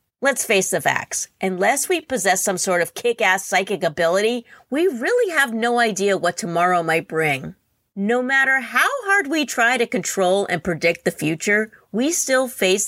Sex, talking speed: female, 170 wpm